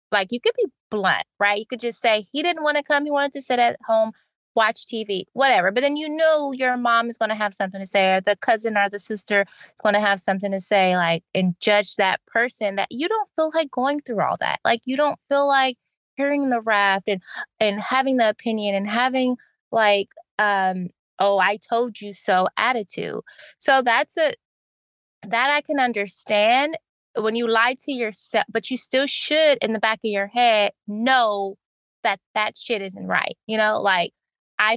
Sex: female